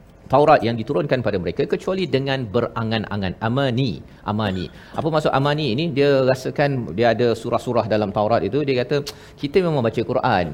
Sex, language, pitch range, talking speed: male, Malayalam, 115-150 Hz, 160 wpm